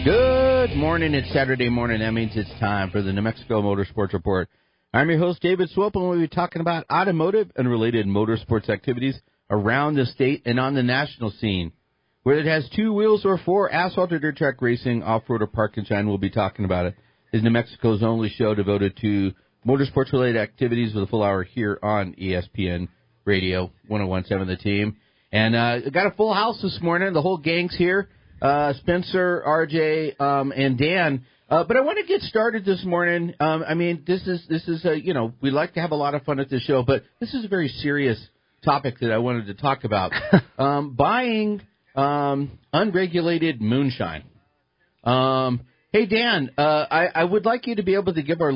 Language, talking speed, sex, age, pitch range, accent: English, 200 wpm, male, 50-69, 110-170 Hz, American